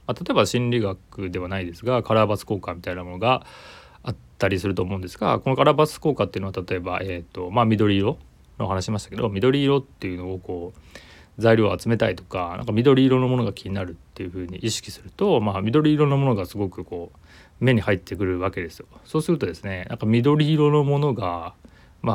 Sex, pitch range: male, 90-120 Hz